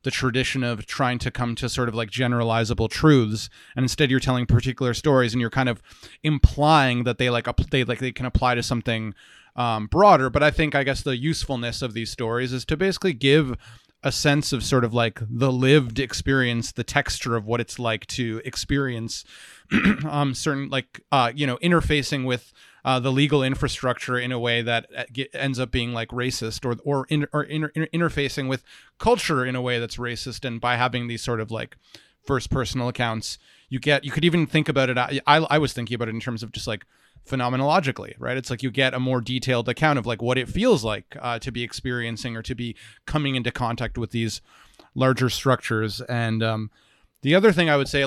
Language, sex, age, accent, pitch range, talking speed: English, male, 30-49, American, 120-135 Hz, 210 wpm